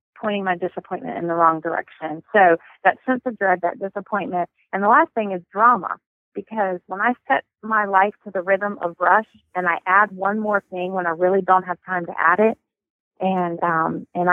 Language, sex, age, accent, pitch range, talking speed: English, female, 30-49, American, 180-215 Hz, 205 wpm